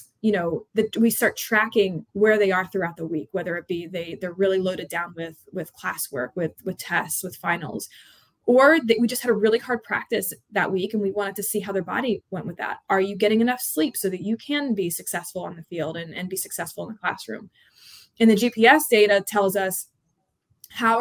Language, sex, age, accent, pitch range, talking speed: English, female, 20-39, American, 185-225 Hz, 225 wpm